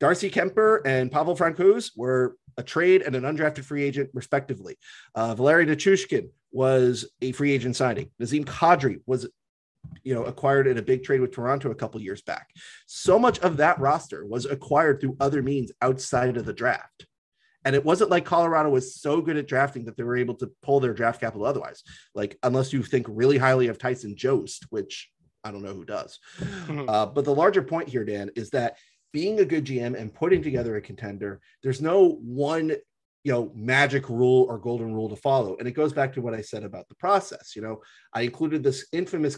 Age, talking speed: 30-49, 205 wpm